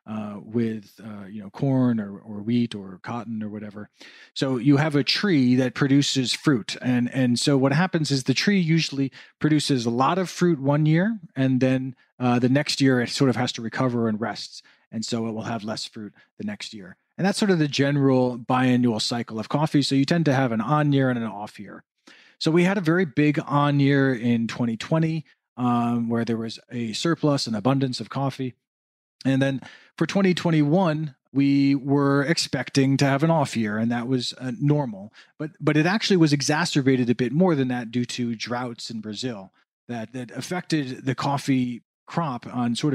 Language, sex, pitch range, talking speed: English, male, 120-150 Hz, 195 wpm